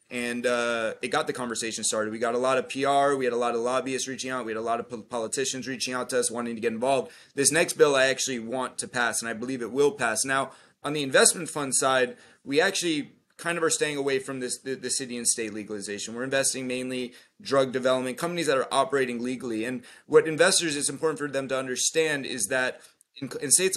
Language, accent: English, American